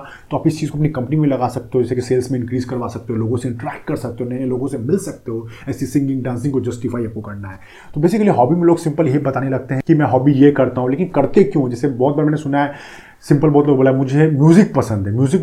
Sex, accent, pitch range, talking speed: male, native, 120-155 Hz, 255 wpm